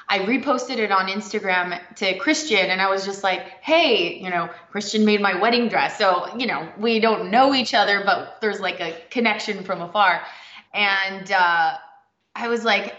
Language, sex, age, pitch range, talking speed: English, female, 20-39, 180-220 Hz, 185 wpm